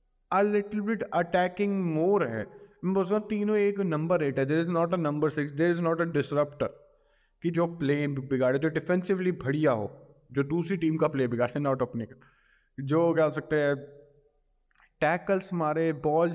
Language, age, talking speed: Hindi, 20-39, 35 wpm